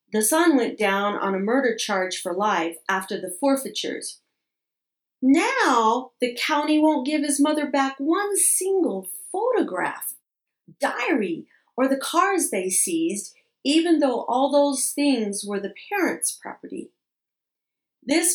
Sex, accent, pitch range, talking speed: female, American, 215-310 Hz, 130 wpm